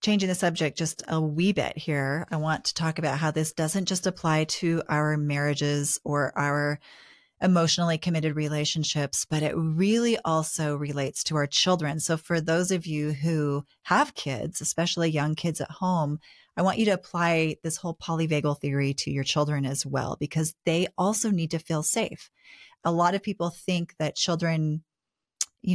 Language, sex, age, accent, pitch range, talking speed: English, female, 30-49, American, 155-190 Hz, 175 wpm